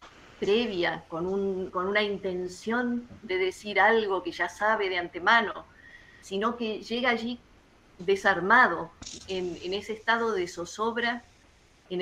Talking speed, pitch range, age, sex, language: 130 wpm, 185-235 Hz, 40-59, female, Spanish